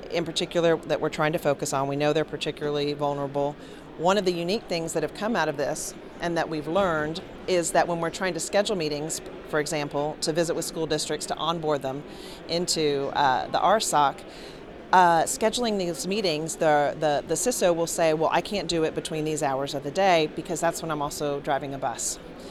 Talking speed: 210 wpm